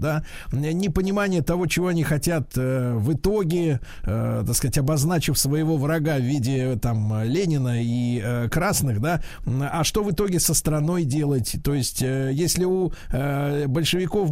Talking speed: 155 wpm